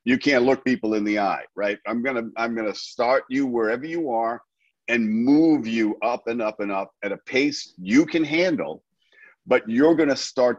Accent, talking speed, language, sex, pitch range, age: American, 215 wpm, English, male, 115-175 Hz, 50-69